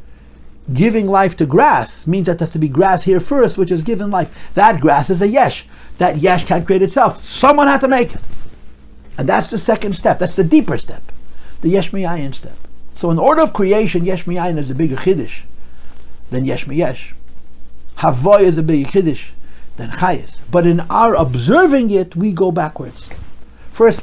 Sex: male